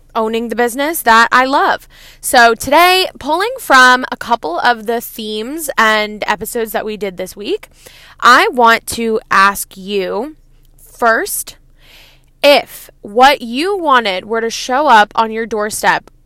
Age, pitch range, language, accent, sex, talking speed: 20-39, 220-260 Hz, English, American, female, 145 wpm